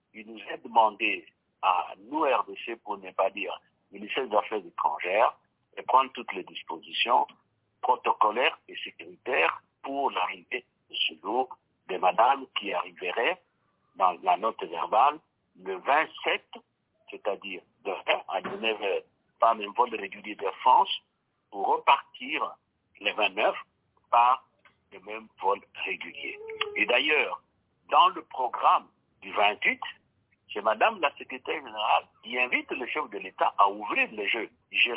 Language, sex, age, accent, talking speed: English, male, 60-79, French, 140 wpm